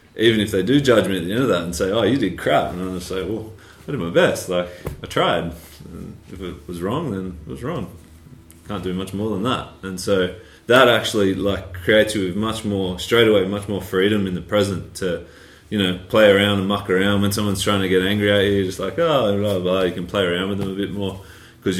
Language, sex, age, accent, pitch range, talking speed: English, male, 20-39, Australian, 90-105 Hz, 260 wpm